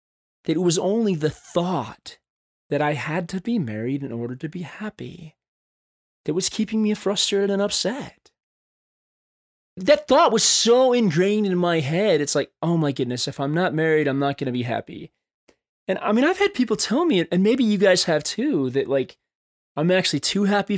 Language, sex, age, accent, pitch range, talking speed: English, male, 20-39, American, 140-205 Hz, 195 wpm